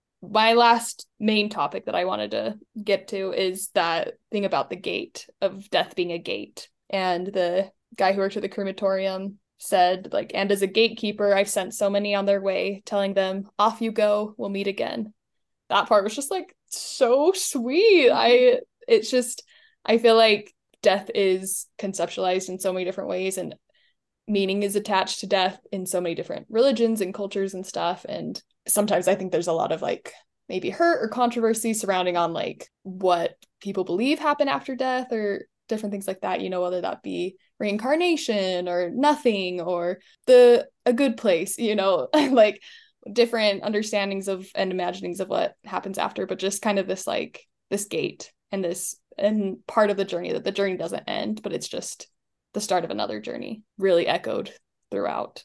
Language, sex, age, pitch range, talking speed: English, female, 10-29, 190-230 Hz, 185 wpm